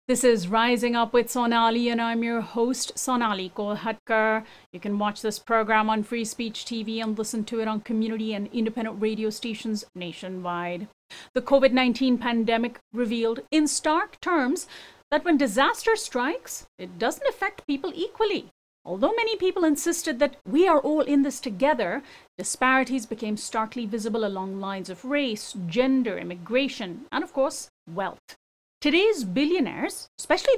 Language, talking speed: English, 150 wpm